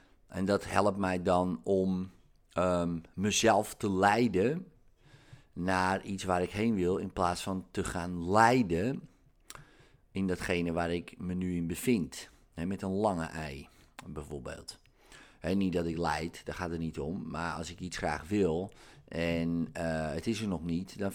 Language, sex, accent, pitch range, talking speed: Dutch, male, Dutch, 90-130 Hz, 160 wpm